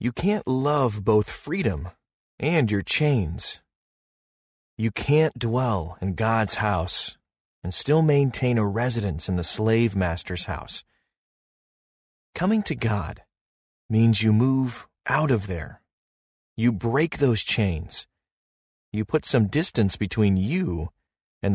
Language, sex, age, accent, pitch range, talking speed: English, male, 30-49, American, 95-130 Hz, 125 wpm